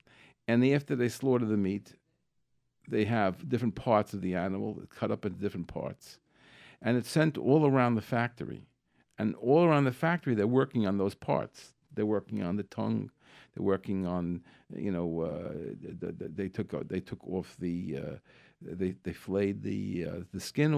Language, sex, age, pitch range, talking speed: English, male, 50-69, 100-130 Hz, 175 wpm